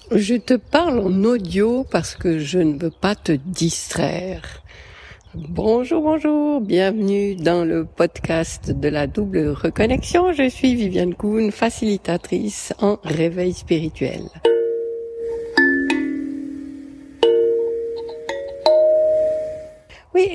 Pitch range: 175-280 Hz